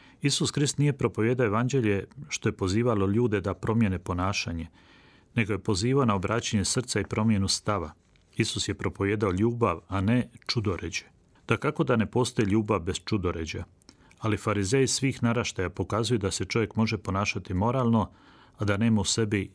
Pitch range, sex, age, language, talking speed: 95-120 Hz, male, 40-59, Croatian, 160 wpm